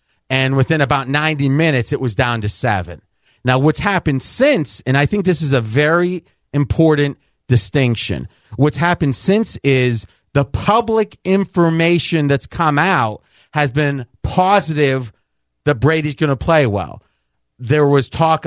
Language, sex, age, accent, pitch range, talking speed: English, male, 30-49, American, 125-160 Hz, 145 wpm